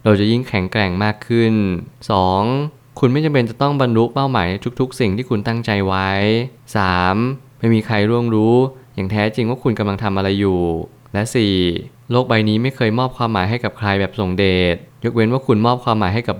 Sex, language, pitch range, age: male, Thai, 100-120 Hz, 20-39